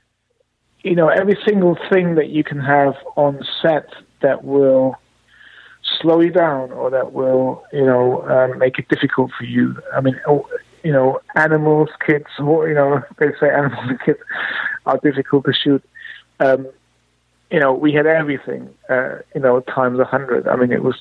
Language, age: English, 50-69